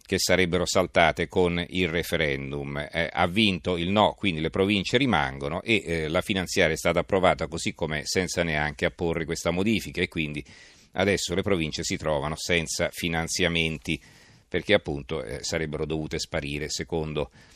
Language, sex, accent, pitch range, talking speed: Italian, male, native, 80-95 Hz, 155 wpm